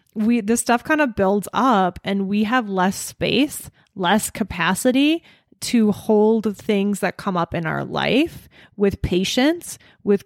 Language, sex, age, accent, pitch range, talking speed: English, female, 20-39, American, 180-225 Hz, 150 wpm